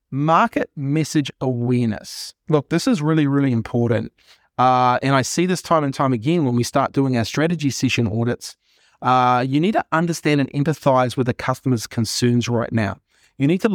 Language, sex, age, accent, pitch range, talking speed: English, male, 30-49, Australian, 125-150 Hz, 185 wpm